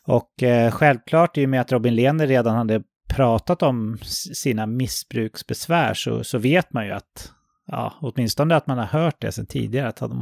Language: English